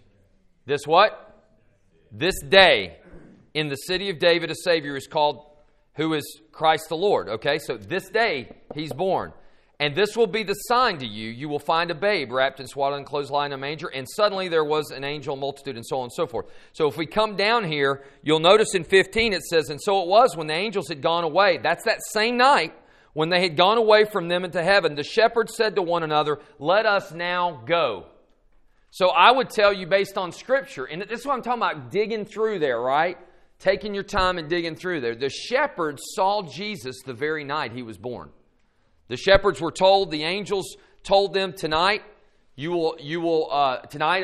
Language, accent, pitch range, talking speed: English, American, 150-200 Hz, 205 wpm